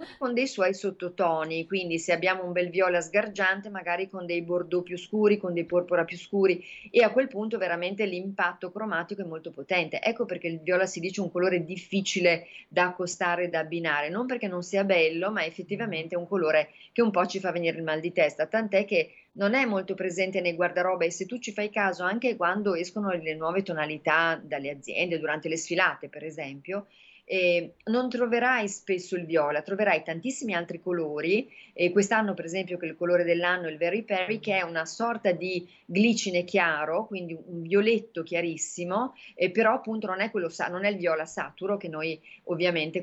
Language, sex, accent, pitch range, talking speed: Italian, female, native, 170-200 Hz, 195 wpm